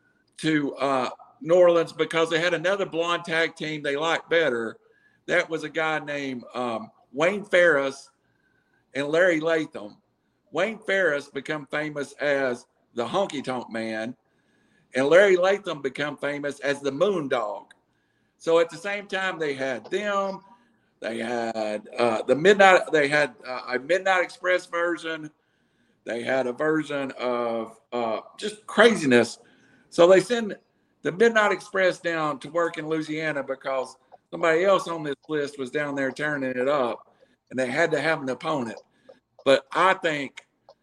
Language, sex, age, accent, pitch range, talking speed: English, male, 50-69, American, 135-180 Hz, 155 wpm